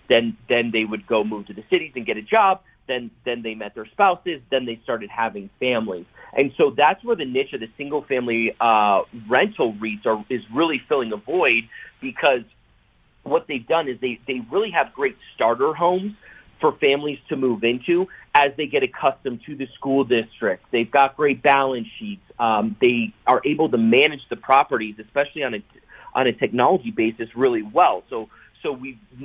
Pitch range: 115-180 Hz